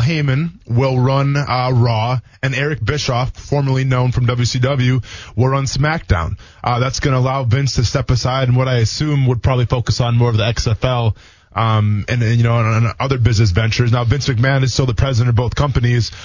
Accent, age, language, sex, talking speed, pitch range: American, 20-39, English, male, 200 wpm, 115-130 Hz